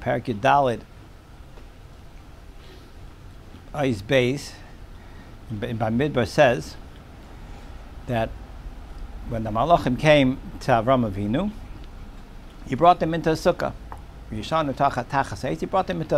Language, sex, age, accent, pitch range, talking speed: English, male, 60-79, American, 105-145 Hz, 95 wpm